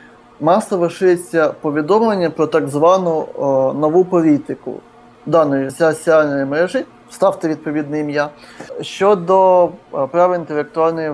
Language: Ukrainian